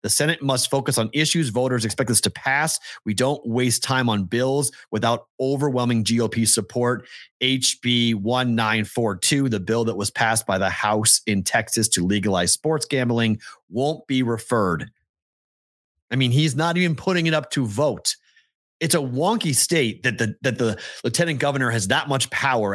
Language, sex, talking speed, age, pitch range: English, male, 175 wpm, 30-49, 115-150 Hz